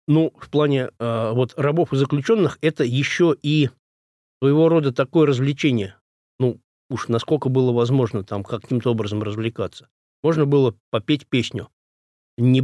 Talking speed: 140 wpm